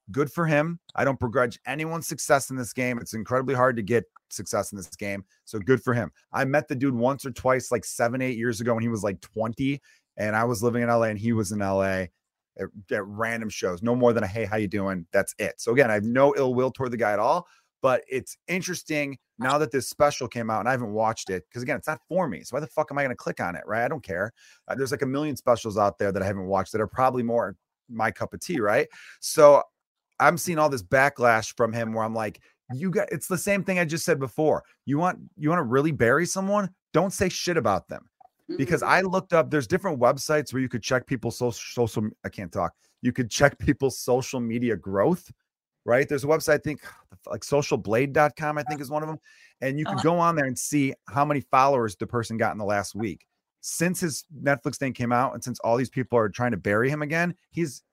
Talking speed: 250 wpm